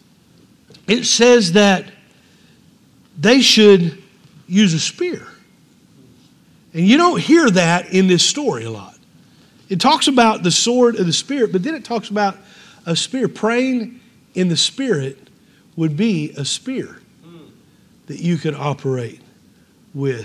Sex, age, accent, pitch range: male, 50-69, American, 165-225 Hz